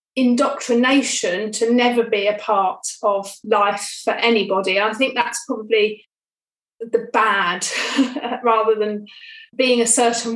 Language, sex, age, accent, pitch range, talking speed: English, female, 30-49, British, 205-245 Hz, 120 wpm